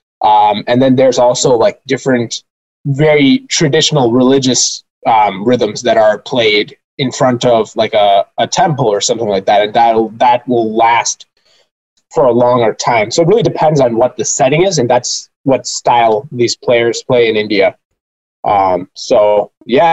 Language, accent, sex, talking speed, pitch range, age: English, American, male, 170 wpm, 110-130 Hz, 20-39